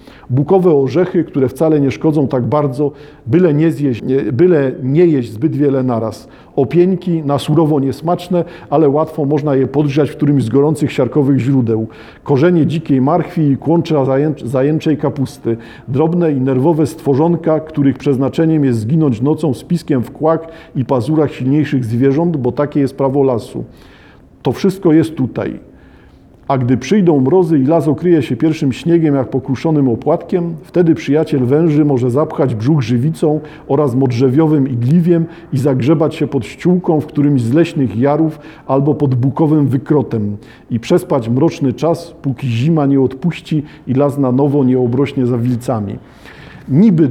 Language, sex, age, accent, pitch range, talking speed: Polish, male, 50-69, native, 130-160 Hz, 150 wpm